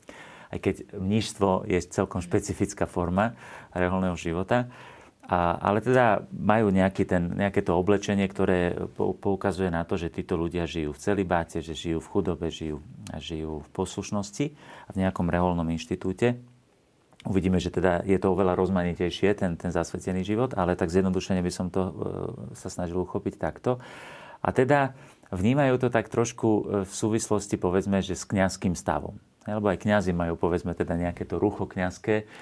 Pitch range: 90-105 Hz